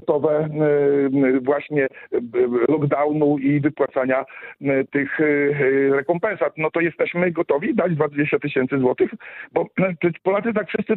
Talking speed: 100 wpm